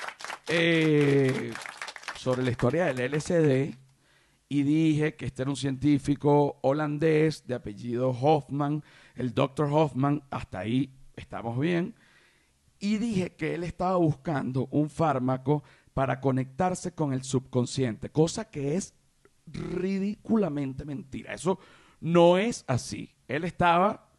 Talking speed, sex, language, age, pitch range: 120 wpm, male, Spanish, 50-69, 135-175 Hz